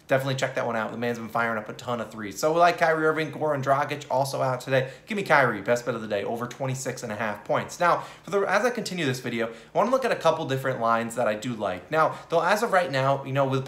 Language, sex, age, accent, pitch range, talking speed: English, male, 20-39, American, 120-155 Hz, 305 wpm